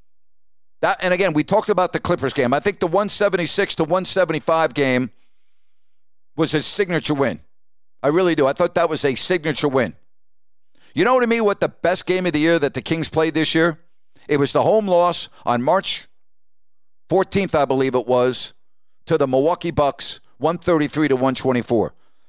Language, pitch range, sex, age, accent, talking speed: English, 140-180 Hz, male, 50-69, American, 180 wpm